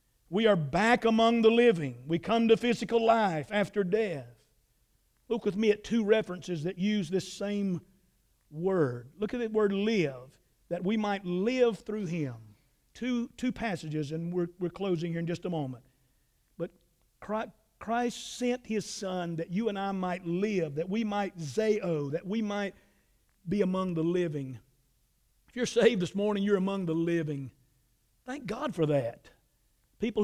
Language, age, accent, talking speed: English, 50-69, American, 165 wpm